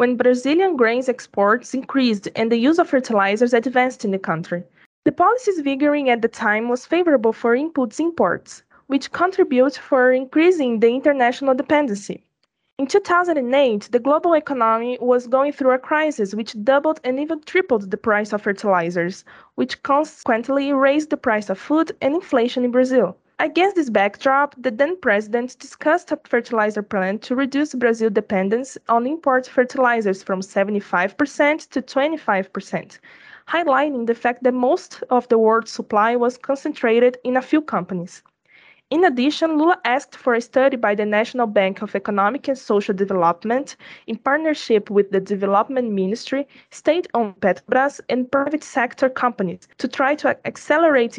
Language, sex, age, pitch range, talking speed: English, female, 20-39, 215-275 Hz, 150 wpm